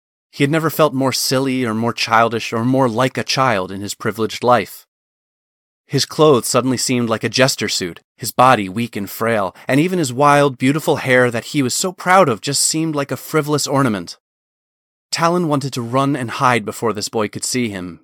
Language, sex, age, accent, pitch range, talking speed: English, male, 30-49, American, 110-140 Hz, 205 wpm